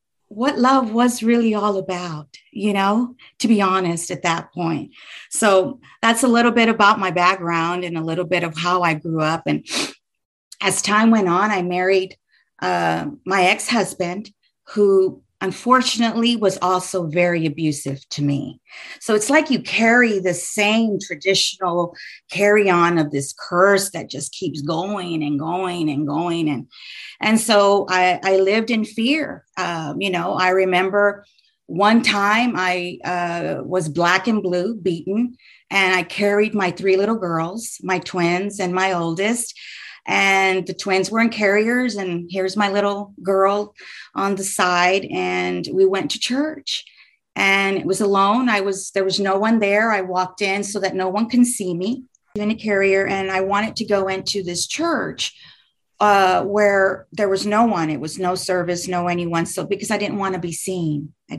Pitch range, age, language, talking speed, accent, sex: 175-210 Hz, 40-59, English, 170 wpm, American, female